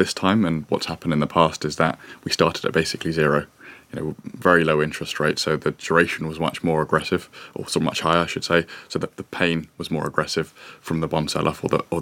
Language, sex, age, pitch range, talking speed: English, male, 20-39, 75-85 Hz, 245 wpm